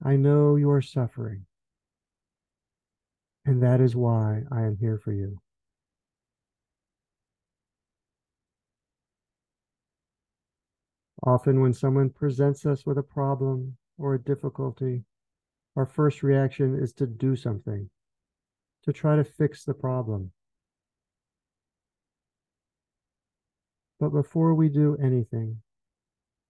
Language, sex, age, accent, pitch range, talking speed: English, male, 50-69, American, 110-140 Hz, 95 wpm